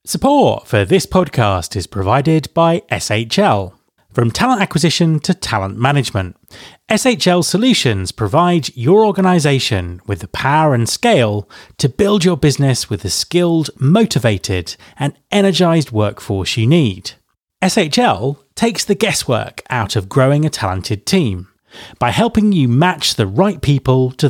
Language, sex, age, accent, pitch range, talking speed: English, male, 30-49, British, 105-175 Hz, 135 wpm